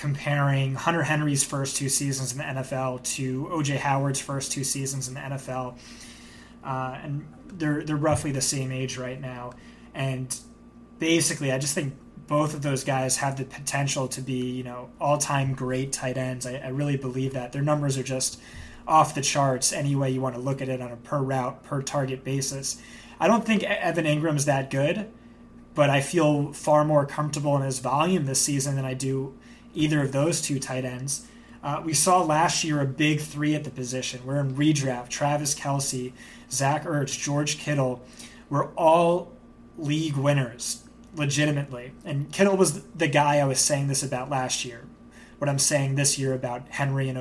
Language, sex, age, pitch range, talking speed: English, male, 20-39, 130-150 Hz, 190 wpm